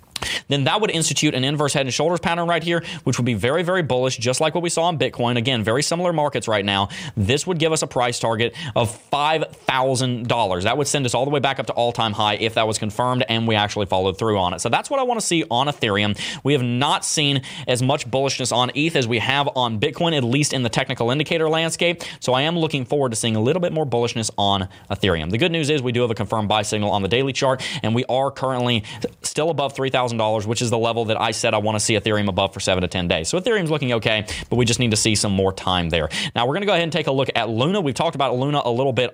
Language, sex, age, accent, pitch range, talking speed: English, male, 30-49, American, 115-150 Hz, 275 wpm